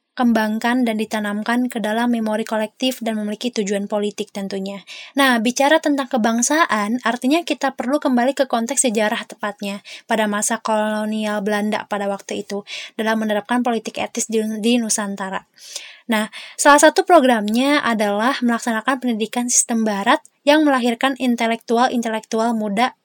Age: 20-39